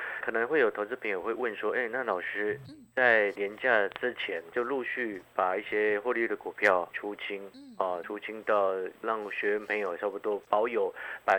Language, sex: Chinese, male